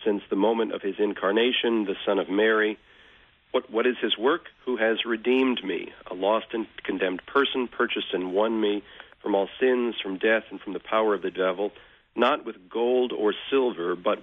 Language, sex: English, male